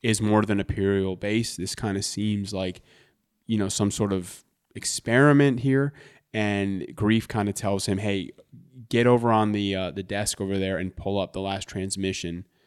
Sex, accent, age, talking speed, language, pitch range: male, American, 20-39, 190 wpm, English, 95-110 Hz